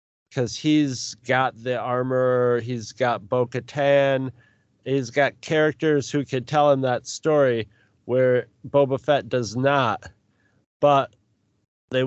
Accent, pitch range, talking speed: American, 110-140 Hz, 125 wpm